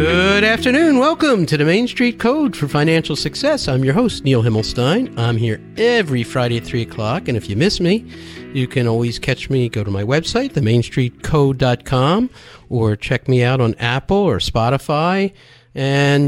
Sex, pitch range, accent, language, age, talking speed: male, 120-165 Hz, American, English, 50-69, 175 wpm